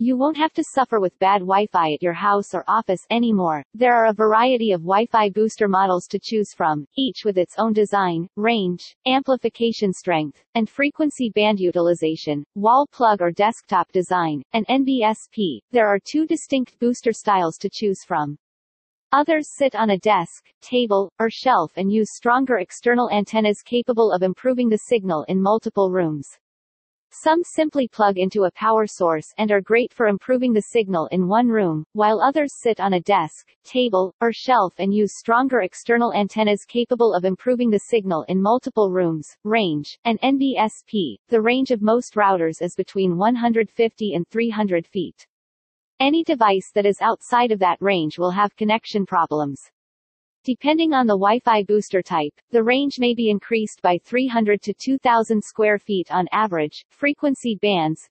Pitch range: 185-235 Hz